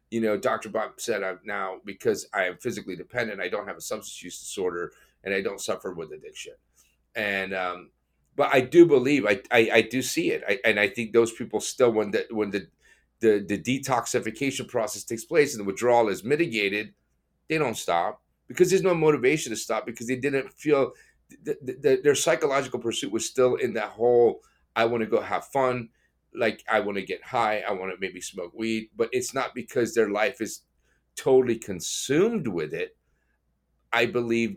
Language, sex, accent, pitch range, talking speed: English, male, American, 100-155 Hz, 200 wpm